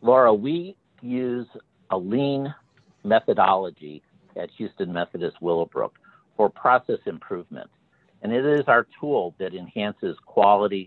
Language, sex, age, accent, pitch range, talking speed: English, male, 50-69, American, 100-165 Hz, 115 wpm